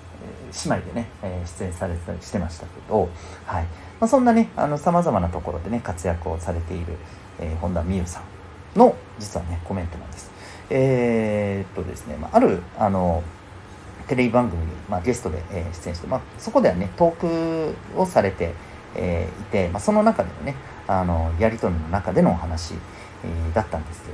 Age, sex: 40-59, male